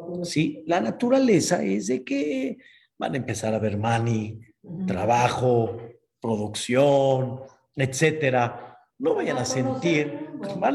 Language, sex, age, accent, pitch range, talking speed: Spanish, male, 50-69, Mexican, 130-190 Hz, 110 wpm